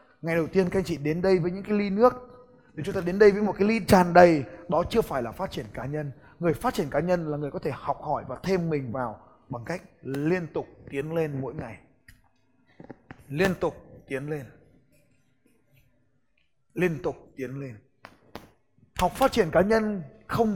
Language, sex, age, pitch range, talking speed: Vietnamese, male, 20-39, 135-190 Hz, 200 wpm